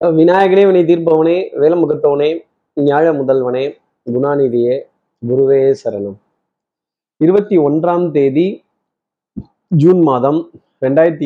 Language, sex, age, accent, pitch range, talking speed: Tamil, male, 30-49, native, 135-185 Hz, 80 wpm